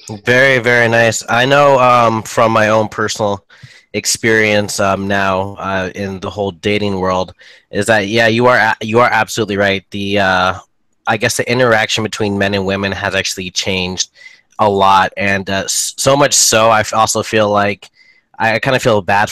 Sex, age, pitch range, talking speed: male, 20-39, 100-115 Hz, 185 wpm